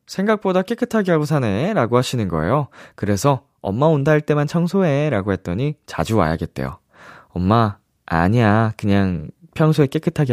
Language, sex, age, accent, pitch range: Korean, male, 20-39, native, 100-150 Hz